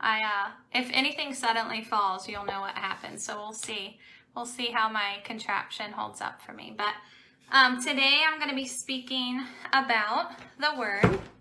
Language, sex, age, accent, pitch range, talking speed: English, female, 10-29, American, 215-255 Hz, 175 wpm